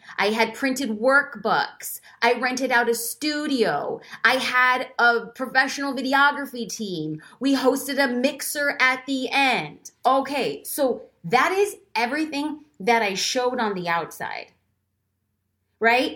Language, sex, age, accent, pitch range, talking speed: English, female, 20-39, American, 195-270 Hz, 125 wpm